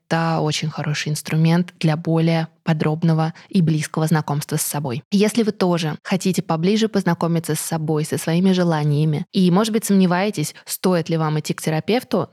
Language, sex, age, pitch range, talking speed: Russian, female, 20-39, 160-195 Hz, 160 wpm